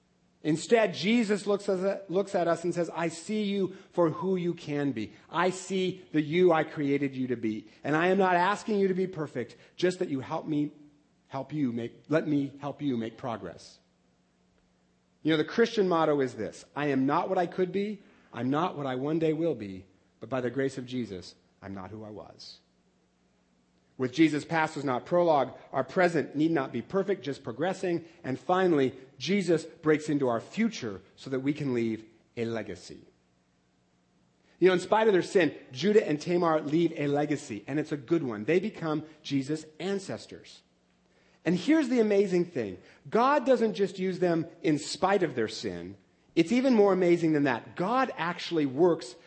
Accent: American